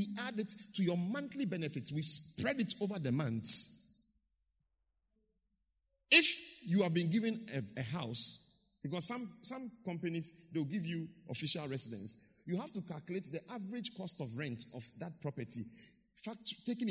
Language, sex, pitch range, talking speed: English, male, 140-215 Hz, 155 wpm